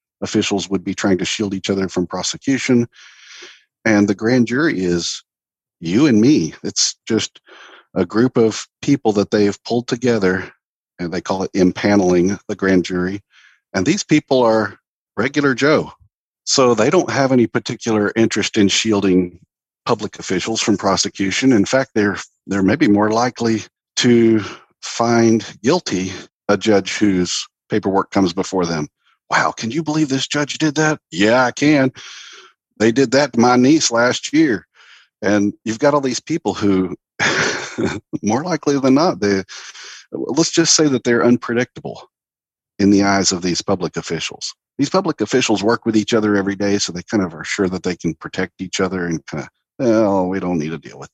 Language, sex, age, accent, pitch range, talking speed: English, male, 50-69, American, 95-125 Hz, 170 wpm